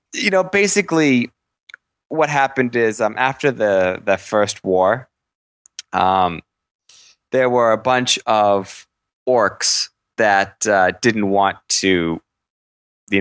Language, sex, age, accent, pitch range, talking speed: English, male, 20-39, American, 90-120 Hz, 115 wpm